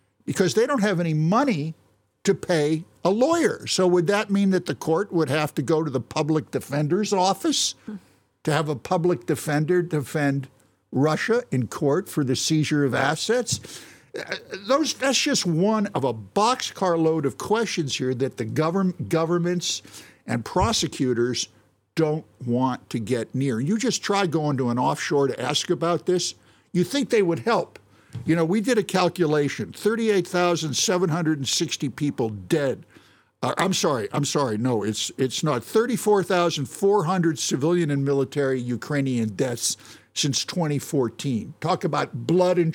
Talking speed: 150 wpm